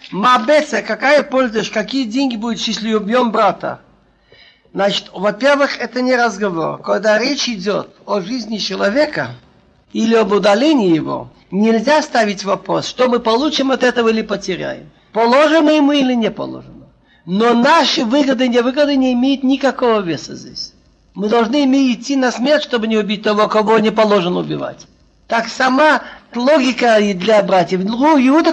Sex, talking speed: male, 150 wpm